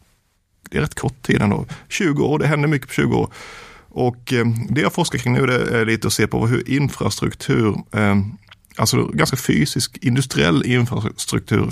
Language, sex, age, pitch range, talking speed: Swedish, male, 30-49, 105-130 Hz, 165 wpm